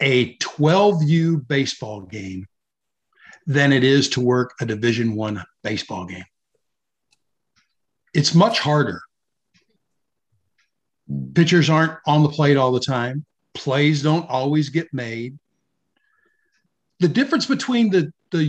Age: 50-69